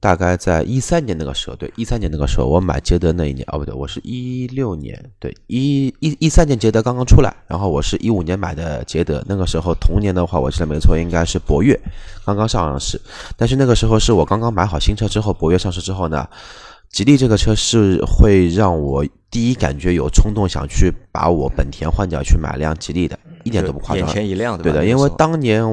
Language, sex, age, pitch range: Chinese, male, 20-39, 80-105 Hz